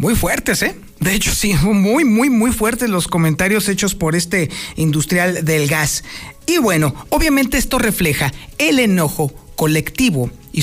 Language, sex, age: Spanish, male, 50-69